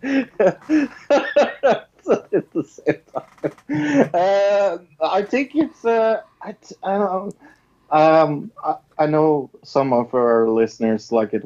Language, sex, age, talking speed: English, male, 30-49, 125 wpm